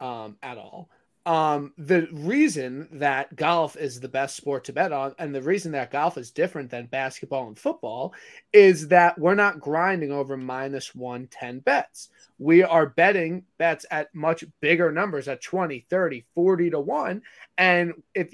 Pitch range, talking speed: 140-180 Hz, 175 wpm